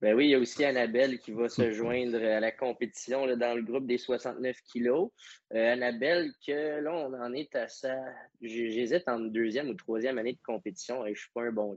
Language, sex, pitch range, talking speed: French, male, 110-125 Hz, 235 wpm